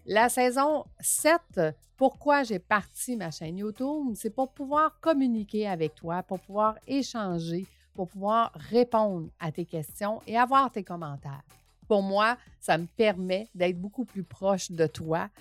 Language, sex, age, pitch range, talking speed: French, female, 50-69, 175-240 Hz, 150 wpm